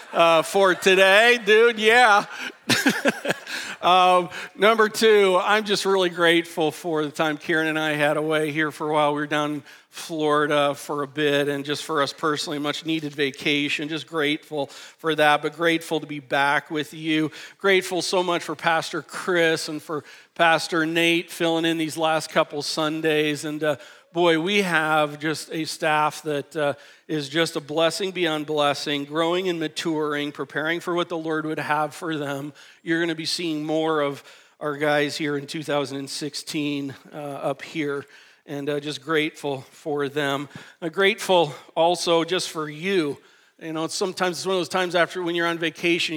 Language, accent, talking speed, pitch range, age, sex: English, American, 175 wpm, 150-170 Hz, 50-69, male